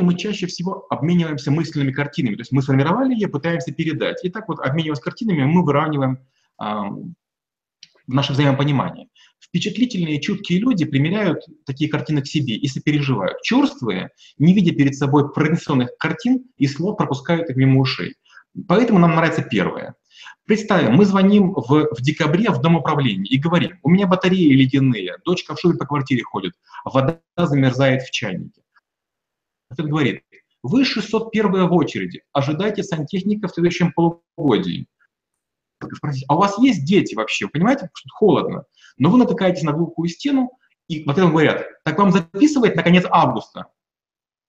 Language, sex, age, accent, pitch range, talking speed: Russian, male, 30-49, native, 140-185 Hz, 150 wpm